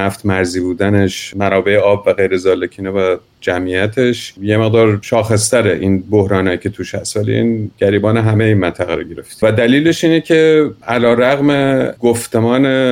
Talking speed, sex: 155 wpm, male